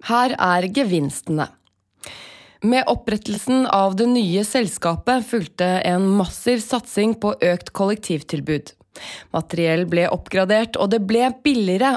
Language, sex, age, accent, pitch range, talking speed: English, female, 20-39, Swedish, 175-230 Hz, 120 wpm